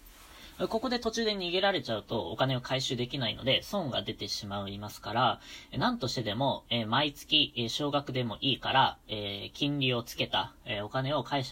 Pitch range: 110-150 Hz